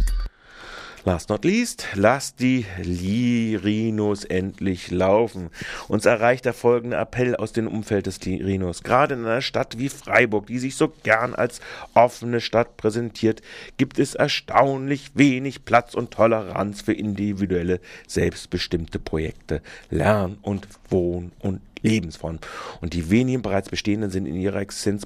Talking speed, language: 135 wpm, German